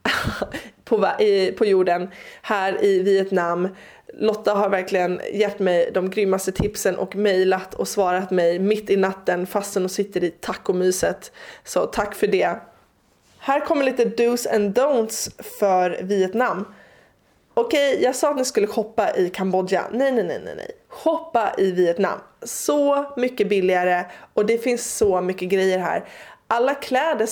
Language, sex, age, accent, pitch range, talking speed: Swedish, female, 20-39, native, 185-235 Hz, 150 wpm